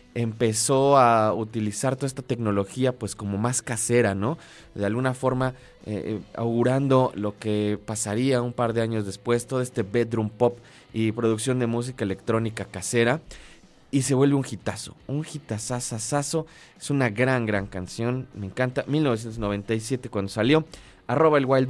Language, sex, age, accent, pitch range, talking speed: Spanish, male, 20-39, Mexican, 110-140 Hz, 150 wpm